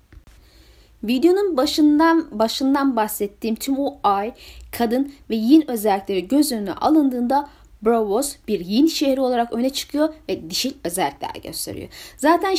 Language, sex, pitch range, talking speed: Turkish, female, 210-310 Hz, 125 wpm